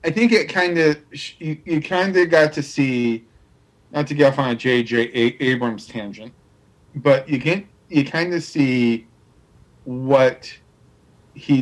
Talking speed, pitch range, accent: 155 wpm, 110-140 Hz, American